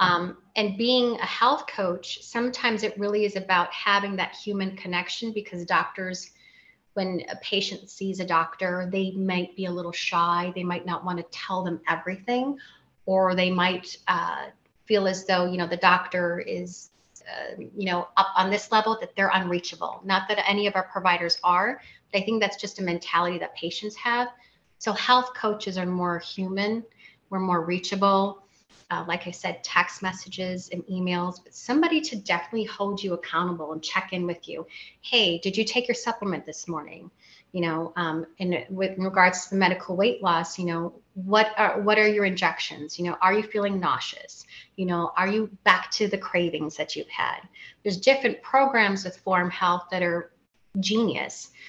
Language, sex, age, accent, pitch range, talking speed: English, female, 30-49, American, 175-205 Hz, 180 wpm